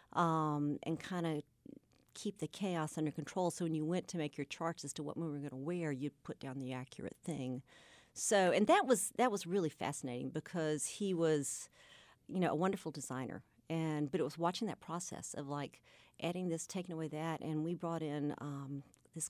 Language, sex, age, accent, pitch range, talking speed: English, female, 50-69, American, 150-185 Hz, 210 wpm